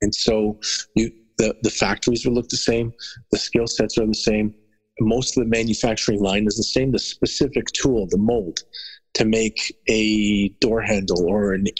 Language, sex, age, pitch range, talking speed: English, male, 40-59, 105-125 Hz, 185 wpm